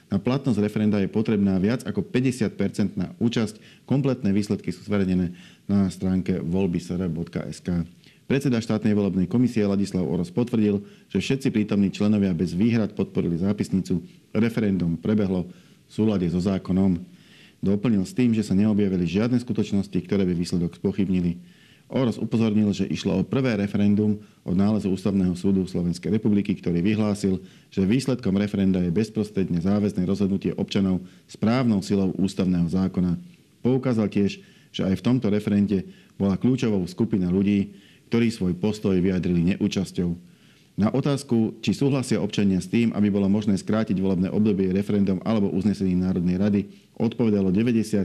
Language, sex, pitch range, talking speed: Slovak, male, 90-105 Hz, 140 wpm